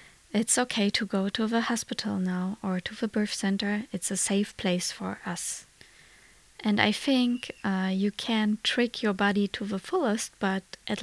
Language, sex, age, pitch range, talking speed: English, female, 20-39, 195-220 Hz, 180 wpm